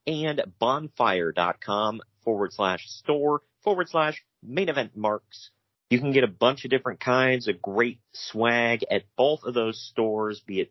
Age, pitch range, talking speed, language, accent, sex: 30-49, 100-125 Hz, 155 wpm, English, American, male